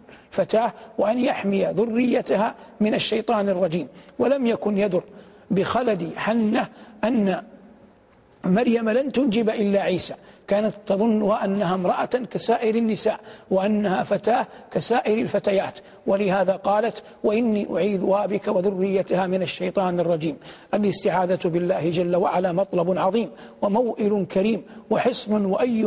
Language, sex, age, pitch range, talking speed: Arabic, male, 60-79, 190-225 Hz, 110 wpm